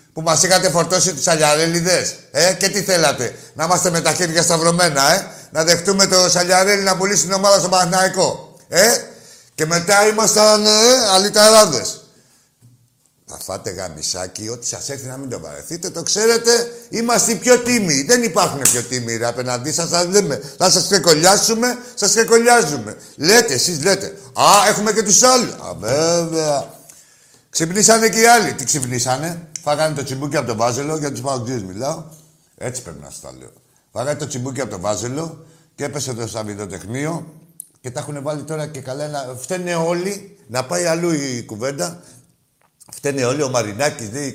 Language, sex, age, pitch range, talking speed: Greek, male, 60-79, 125-185 Hz, 165 wpm